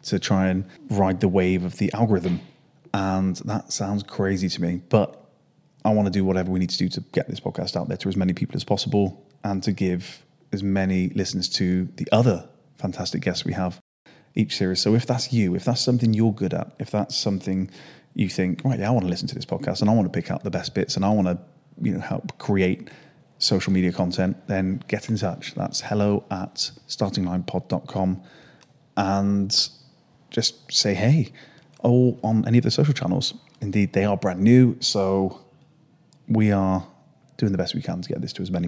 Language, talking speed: English, 210 wpm